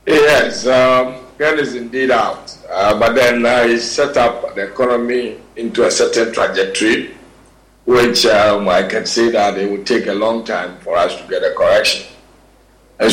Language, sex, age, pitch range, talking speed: English, male, 50-69, 100-125 Hz, 175 wpm